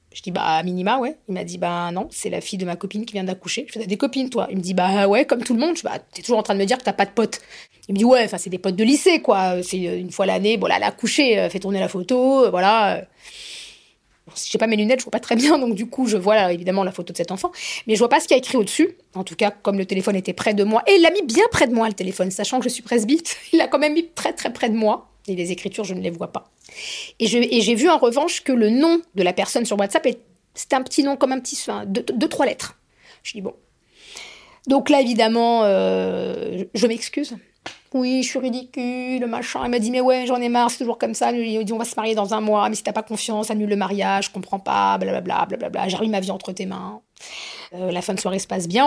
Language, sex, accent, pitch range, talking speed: French, female, French, 195-255 Hz, 295 wpm